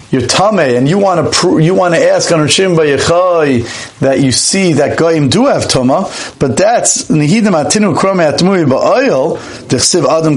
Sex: male